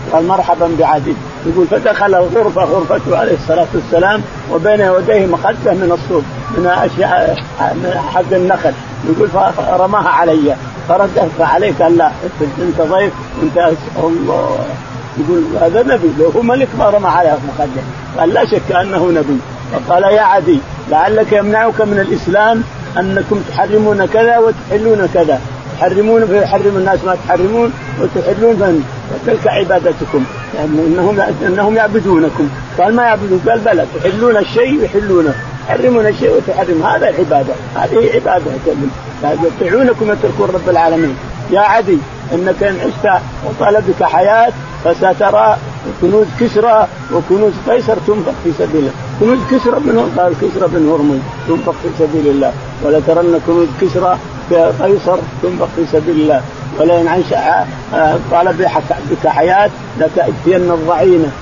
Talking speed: 135 wpm